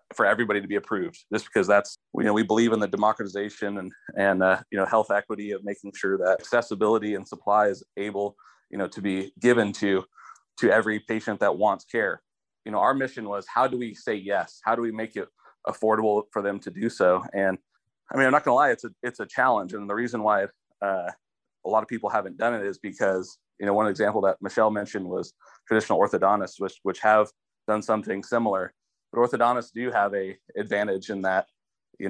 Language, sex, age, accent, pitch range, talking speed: English, male, 30-49, American, 100-110 Hz, 215 wpm